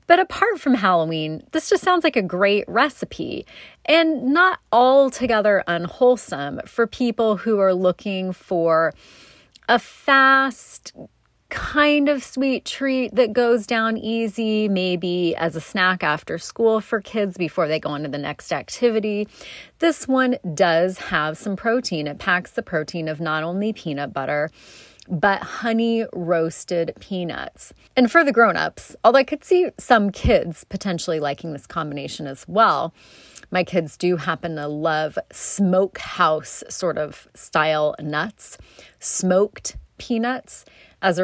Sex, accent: female, American